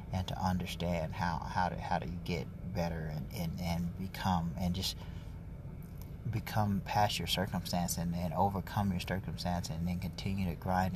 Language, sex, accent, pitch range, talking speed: English, male, American, 85-95 Hz, 165 wpm